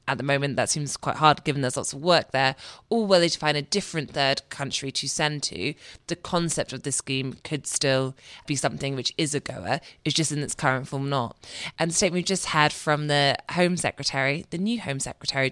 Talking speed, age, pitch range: 225 wpm, 20-39, 135-170 Hz